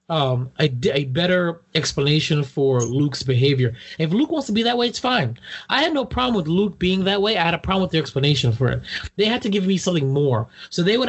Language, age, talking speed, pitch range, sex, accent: English, 20-39, 250 wpm, 135-180 Hz, male, American